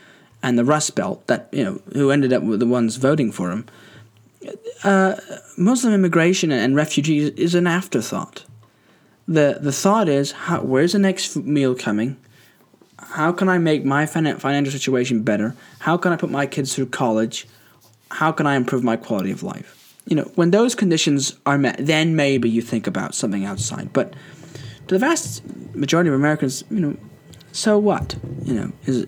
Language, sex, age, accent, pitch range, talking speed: English, male, 10-29, British, 125-150 Hz, 175 wpm